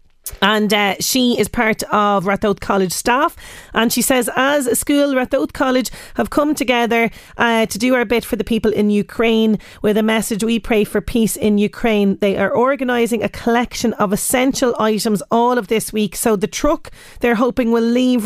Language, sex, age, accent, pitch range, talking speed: English, female, 30-49, Irish, 200-235 Hz, 190 wpm